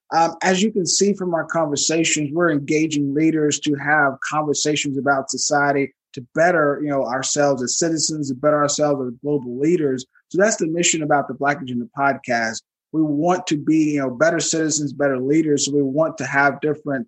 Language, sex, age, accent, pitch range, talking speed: English, male, 20-39, American, 140-155 Hz, 190 wpm